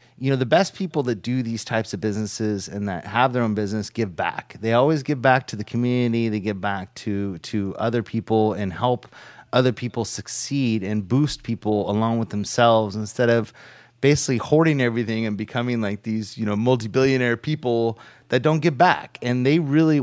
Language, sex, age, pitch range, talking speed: English, male, 30-49, 105-125 Hz, 190 wpm